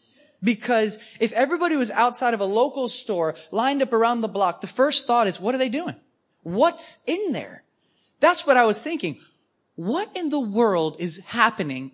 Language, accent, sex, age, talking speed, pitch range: English, American, male, 20-39, 180 wpm, 155-230 Hz